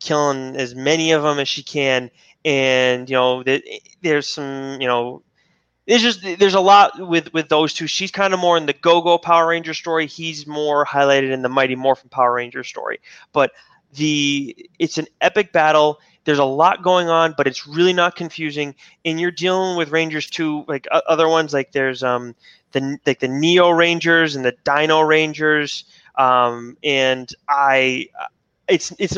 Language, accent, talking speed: English, American, 180 wpm